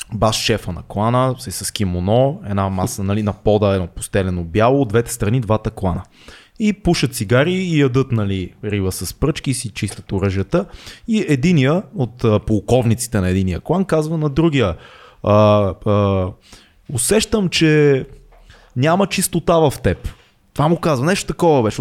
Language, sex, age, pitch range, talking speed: Bulgarian, male, 20-39, 105-155 Hz, 155 wpm